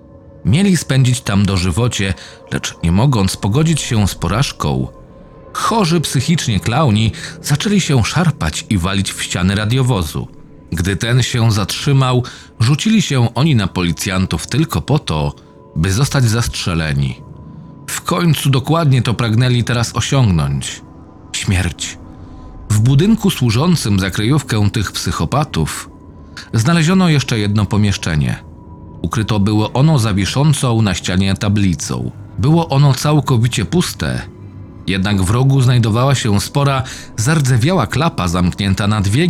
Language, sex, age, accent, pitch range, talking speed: Polish, male, 40-59, native, 95-135 Hz, 120 wpm